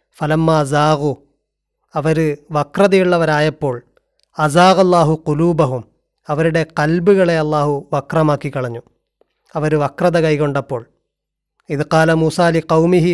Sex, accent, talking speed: male, native, 80 wpm